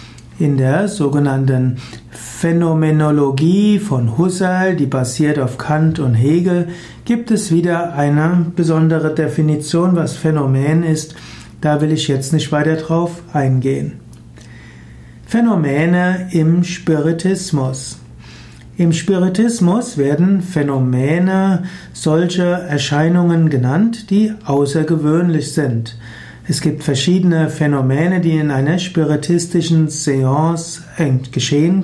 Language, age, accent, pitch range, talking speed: German, 60-79, German, 140-170 Hz, 100 wpm